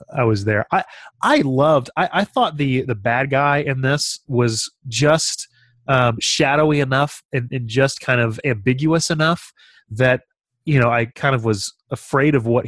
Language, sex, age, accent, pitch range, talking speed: English, male, 30-49, American, 110-135 Hz, 175 wpm